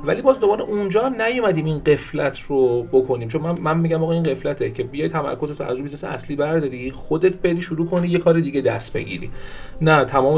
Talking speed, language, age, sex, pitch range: 210 wpm, Persian, 40-59, male, 130-165 Hz